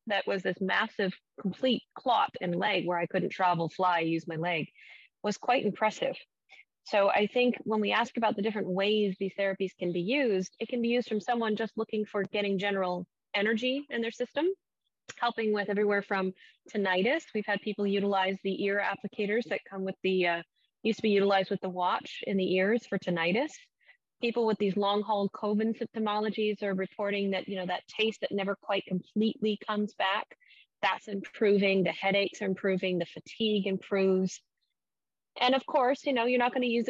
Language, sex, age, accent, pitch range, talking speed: English, female, 30-49, American, 185-220 Hz, 190 wpm